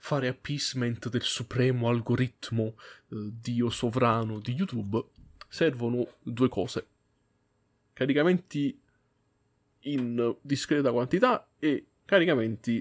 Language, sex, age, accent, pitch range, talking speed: Italian, male, 20-39, native, 110-135 Hz, 85 wpm